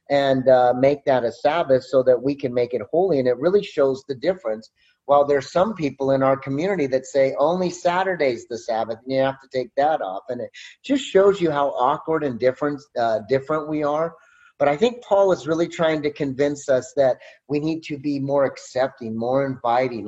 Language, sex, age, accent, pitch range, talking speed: English, male, 30-49, American, 130-160 Hz, 210 wpm